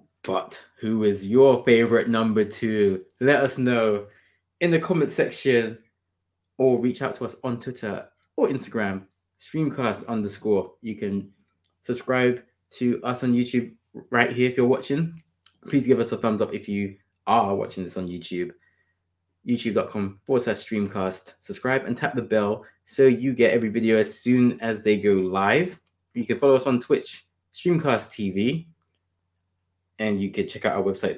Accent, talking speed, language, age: British, 165 wpm, English, 20-39